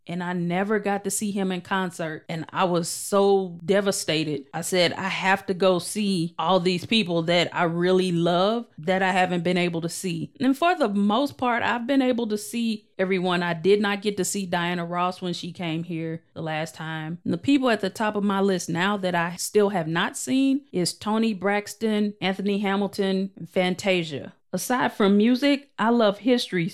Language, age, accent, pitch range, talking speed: English, 30-49, American, 180-215 Hz, 200 wpm